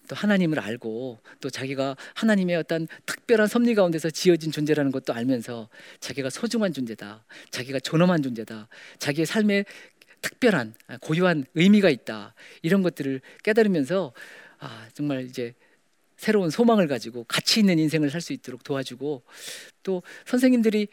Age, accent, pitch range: 40-59, native, 135-225 Hz